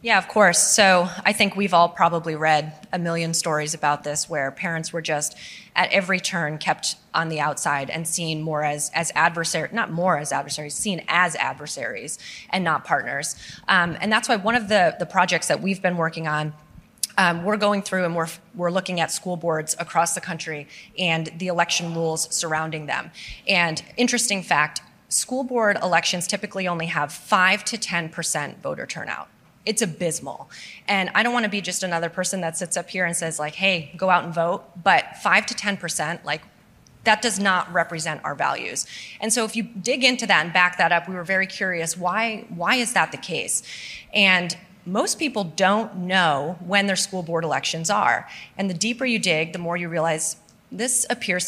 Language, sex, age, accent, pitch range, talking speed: English, female, 20-39, American, 160-195 Hz, 195 wpm